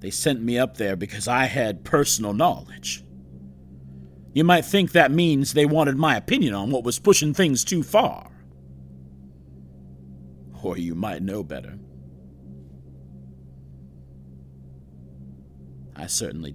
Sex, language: male, English